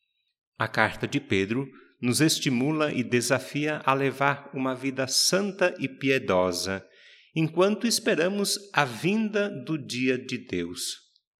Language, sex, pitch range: Portuguese, male, 110-140 Hz